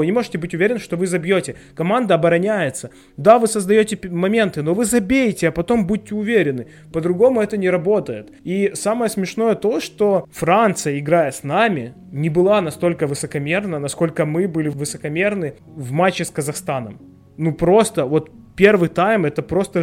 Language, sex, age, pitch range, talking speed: Ukrainian, male, 20-39, 160-210 Hz, 155 wpm